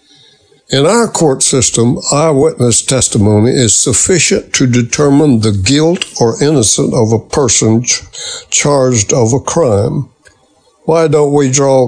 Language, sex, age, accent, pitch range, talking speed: English, male, 60-79, American, 115-145 Hz, 125 wpm